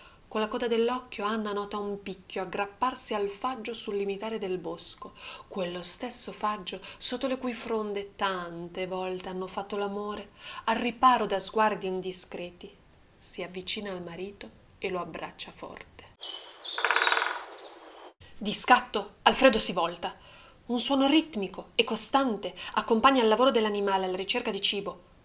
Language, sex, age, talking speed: Italian, female, 20-39, 140 wpm